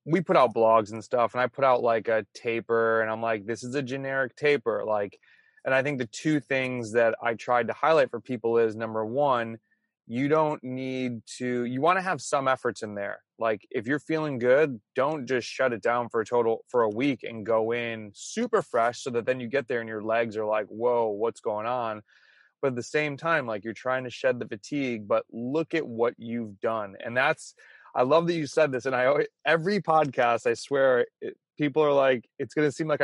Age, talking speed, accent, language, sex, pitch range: 20-39, 230 wpm, American, English, male, 115-150 Hz